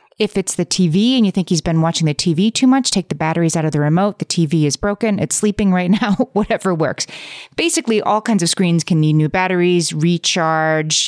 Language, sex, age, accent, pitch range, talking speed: English, female, 30-49, American, 150-185 Hz, 220 wpm